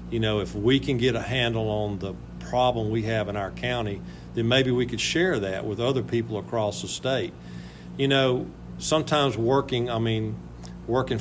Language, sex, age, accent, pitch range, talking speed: English, male, 50-69, American, 100-120 Hz, 185 wpm